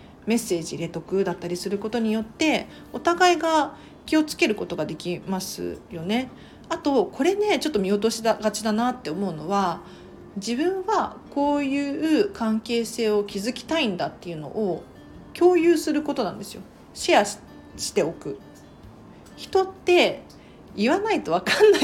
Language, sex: Japanese, female